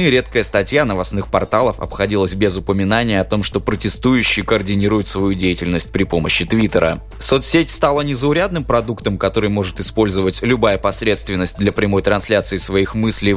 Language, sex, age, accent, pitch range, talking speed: Russian, male, 20-39, native, 95-115 Hz, 140 wpm